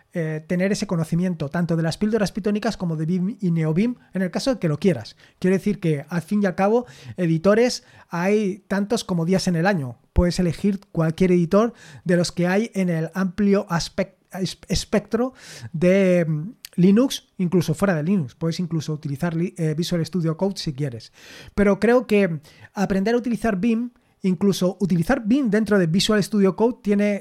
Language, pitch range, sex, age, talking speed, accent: Spanish, 165-205 Hz, male, 20-39, 180 wpm, Spanish